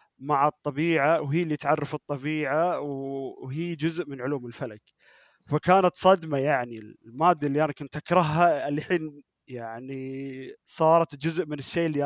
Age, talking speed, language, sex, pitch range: 30-49, 135 wpm, Arabic, male, 130-165 Hz